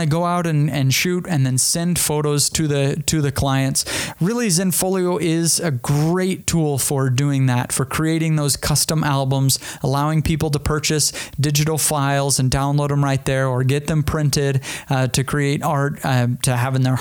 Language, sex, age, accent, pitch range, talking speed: English, male, 30-49, American, 135-160 Hz, 185 wpm